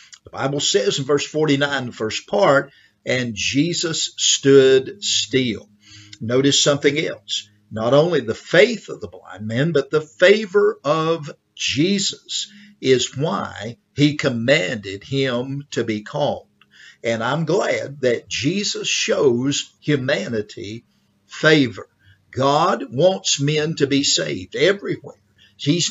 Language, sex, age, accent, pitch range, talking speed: English, male, 50-69, American, 130-175 Hz, 125 wpm